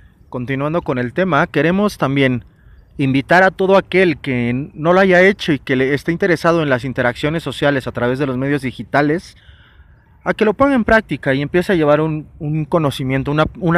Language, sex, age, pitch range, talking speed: Spanish, male, 30-49, 120-150 Hz, 185 wpm